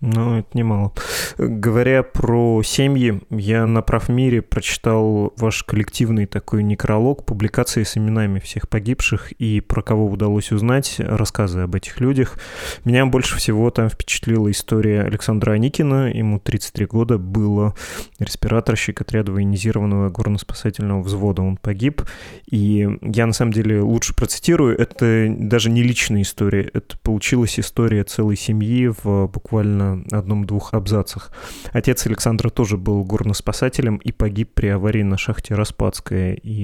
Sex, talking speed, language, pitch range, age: male, 135 wpm, Russian, 100-115 Hz, 20-39